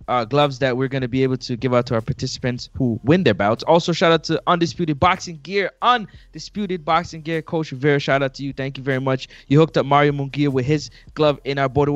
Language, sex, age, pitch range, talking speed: English, male, 20-39, 120-155 Hz, 245 wpm